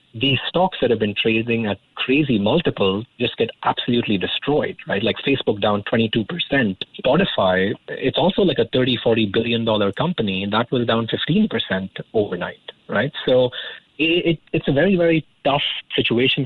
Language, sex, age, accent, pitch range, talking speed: English, male, 30-49, Indian, 110-140 Hz, 150 wpm